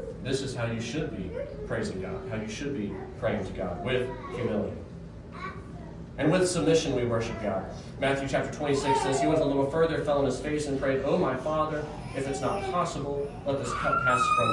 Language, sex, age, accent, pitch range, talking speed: English, male, 40-59, American, 110-165 Hz, 205 wpm